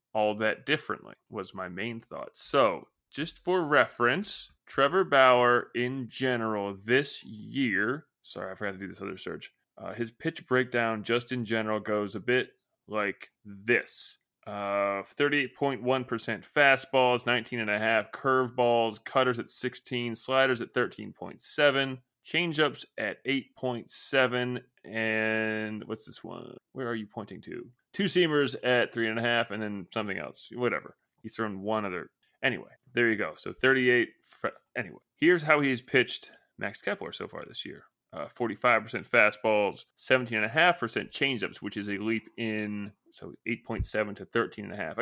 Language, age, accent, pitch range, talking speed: English, 20-39, American, 110-130 Hz, 145 wpm